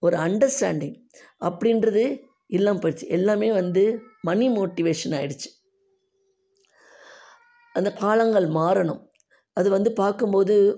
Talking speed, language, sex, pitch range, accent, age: 90 wpm, Tamil, female, 155-205 Hz, native, 20-39